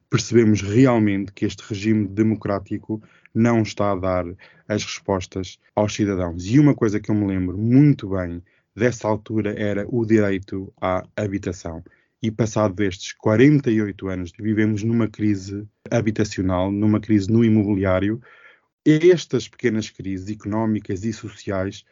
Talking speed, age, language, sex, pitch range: 135 wpm, 20-39, Portuguese, male, 100-120 Hz